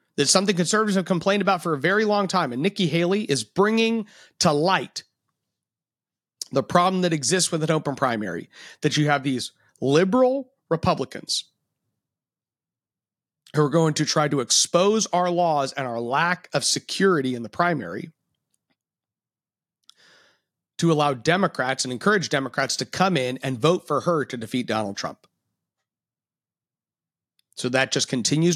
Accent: American